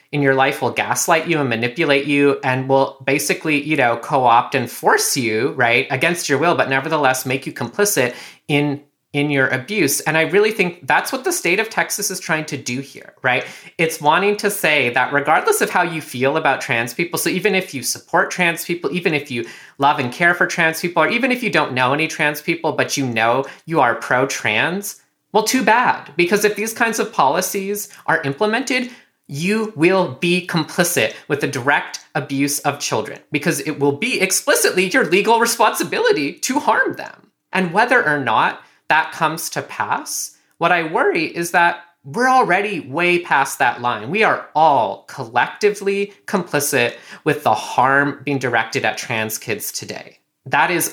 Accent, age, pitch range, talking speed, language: American, 30-49, 140-200 Hz, 185 wpm, English